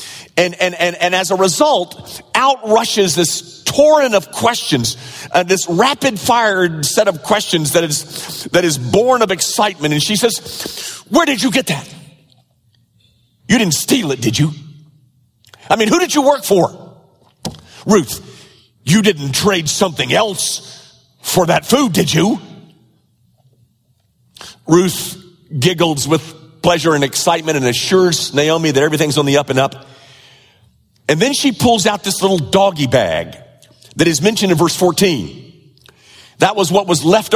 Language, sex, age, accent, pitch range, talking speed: English, male, 40-59, American, 125-190 Hz, 150 wpm